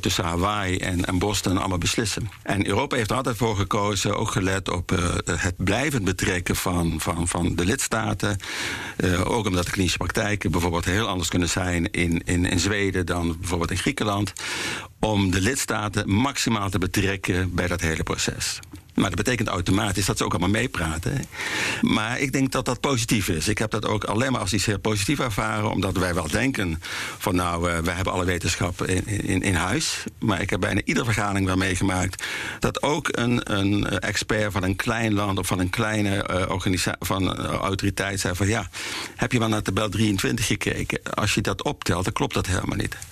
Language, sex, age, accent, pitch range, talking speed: Dutch, male, 60-79, Dutch, 90-110 Hz, 195 wpm